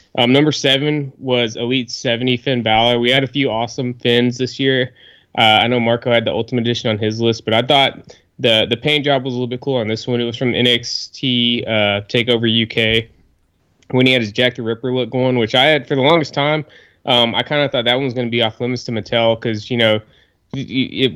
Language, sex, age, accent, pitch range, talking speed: English, male, 20-39, American, 110-130 Hz, 240 wpm